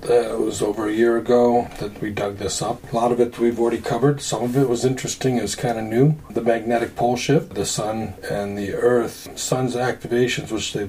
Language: English